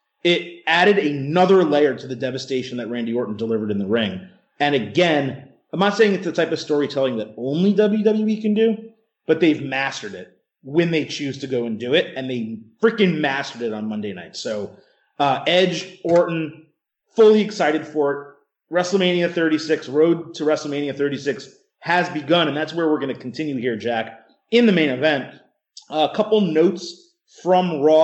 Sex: male